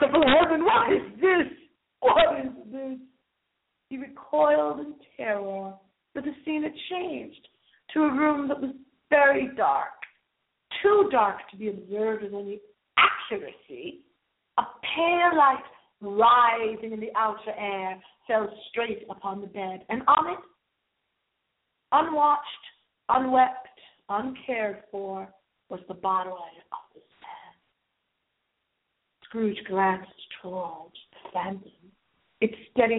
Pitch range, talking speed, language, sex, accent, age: 205-295 Hz, 115 wpm, English, female, American, 50-69